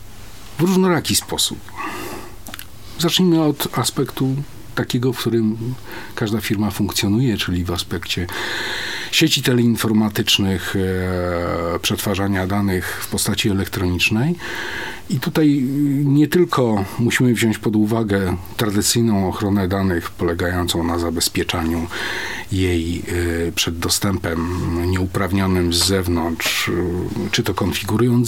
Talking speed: 95 wpm